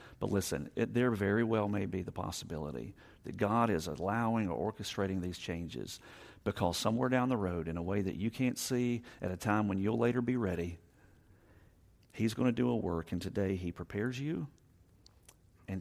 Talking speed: 185 wpm